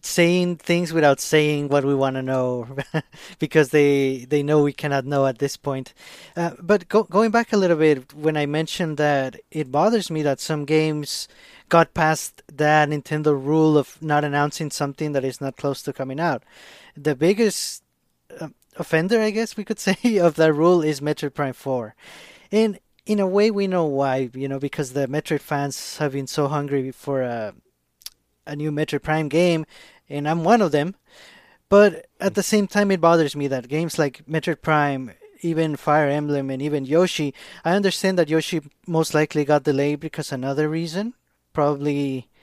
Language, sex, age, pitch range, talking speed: English, male, 20-39, 145-175 Hz, 180 wpm